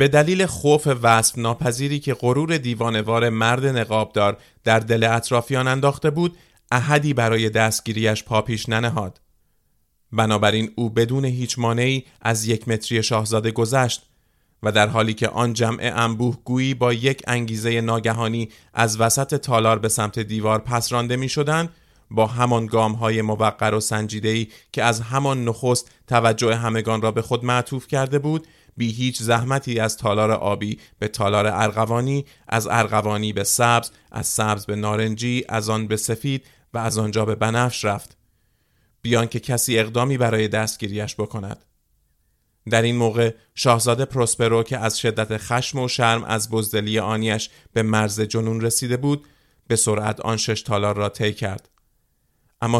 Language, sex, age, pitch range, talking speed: Persian, male, 30-49, 110-125 Hz, 150 wpm